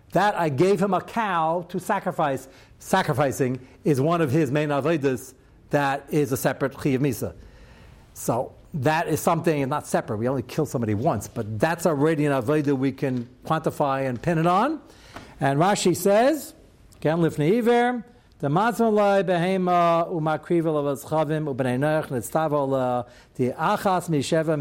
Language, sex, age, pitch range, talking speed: English, male, 60-79, 130-170 Hz, 125 wpm